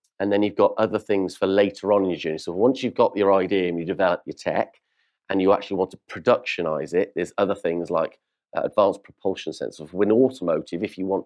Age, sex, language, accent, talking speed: 40-59, male, English, British, 230 wpm